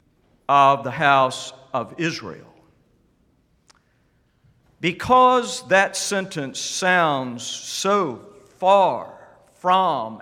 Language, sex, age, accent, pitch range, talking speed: English, male, 50-69, American, 155-205 Hz, 70 wpm